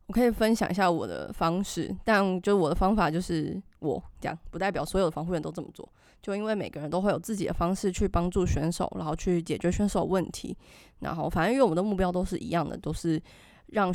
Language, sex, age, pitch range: Chinese, female, 20-39, 170-205 Hz